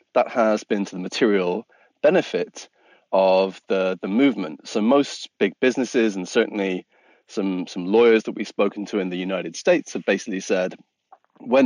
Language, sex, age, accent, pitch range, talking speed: English, male, 30-49, British, 95-120 Hz, 165 wpm